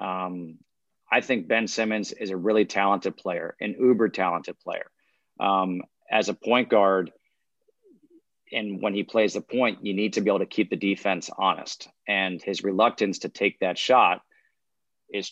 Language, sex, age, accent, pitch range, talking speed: English, male, 40-59, American, 100-115 Hz, 170 wpm